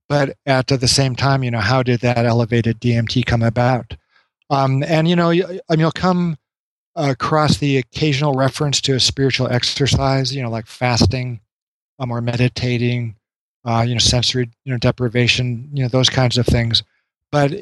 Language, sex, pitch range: English, male, 120-145 Hz